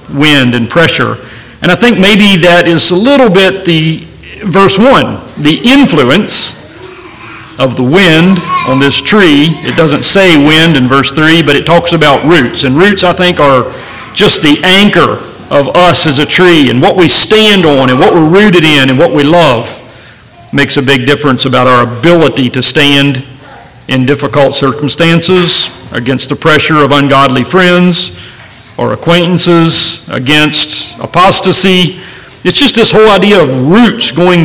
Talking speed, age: 160 wpm, 40-59